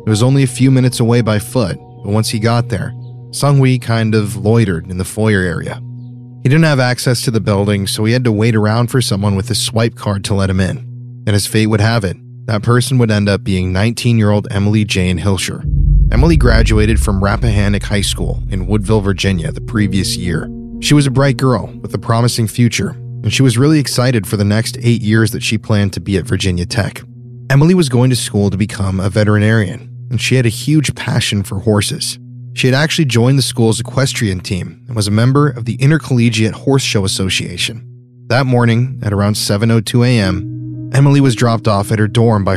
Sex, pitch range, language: male, 105-125 Hz, English